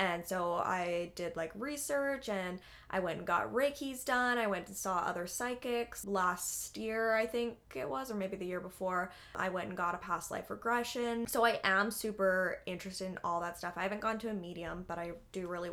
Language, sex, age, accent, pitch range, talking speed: English, female, 10-29, American, 180-220 Hz, 220 wpm